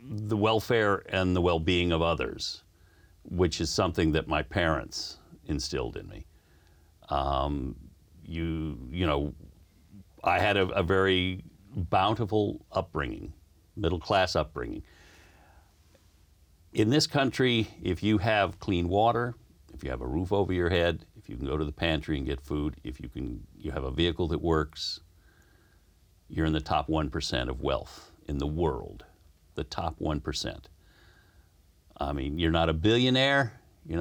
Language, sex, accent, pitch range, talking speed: English, male, American, 80-90 Hz, 150 wpm